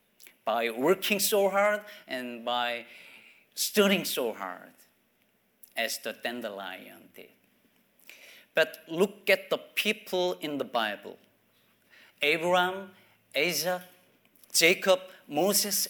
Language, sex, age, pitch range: Korean, male, 40-59, 130-195 Hz